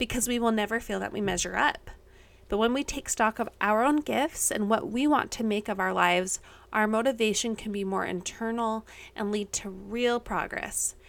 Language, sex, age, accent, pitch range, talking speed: English, female, 20-39, American, 210-260 Hz, 205 wpm